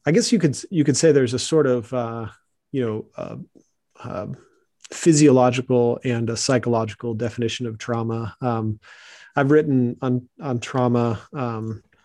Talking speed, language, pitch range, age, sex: 150 wpm, English, 115-130 Hz, 30-49, male